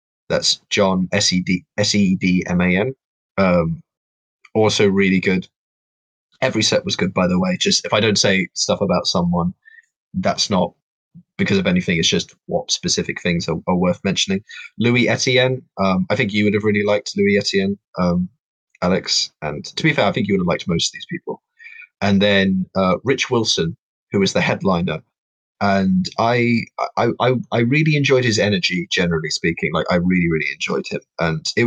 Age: 20-39